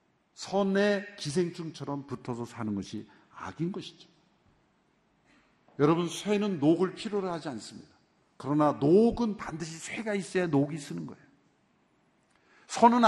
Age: 50-69